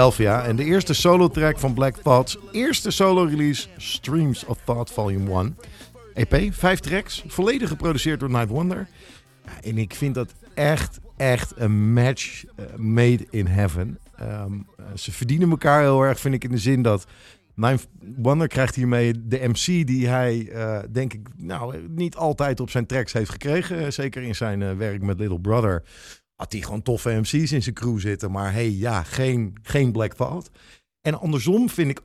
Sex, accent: male, Dutch